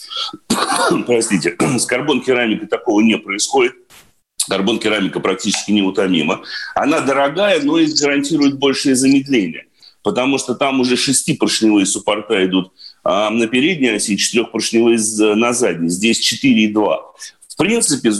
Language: Russian